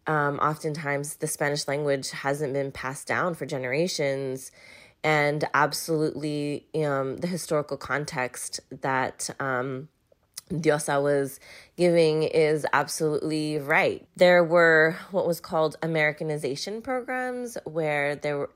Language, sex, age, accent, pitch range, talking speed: English, female, 20-39, American, 140-160 Hz, 115 wpm